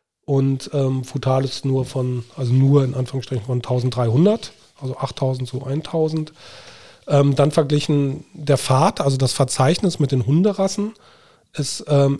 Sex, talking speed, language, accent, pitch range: male, 140 wpm, German, German, 130-155 Hz